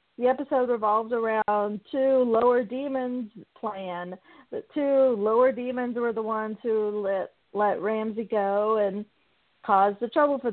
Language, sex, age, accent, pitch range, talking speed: English, female, 40-59, American, 205-245 Hz, 140 wpm